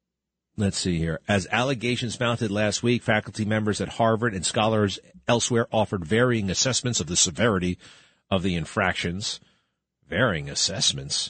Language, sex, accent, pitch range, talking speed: English, male, American, 105-150 Hz, 140 wpm